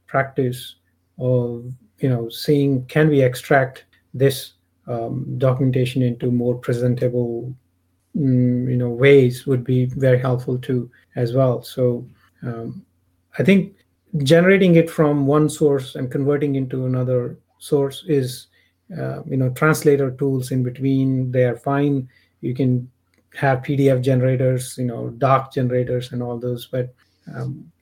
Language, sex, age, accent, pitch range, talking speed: English, male, 30-49, Indian, 120-135 Hz, 135 wpm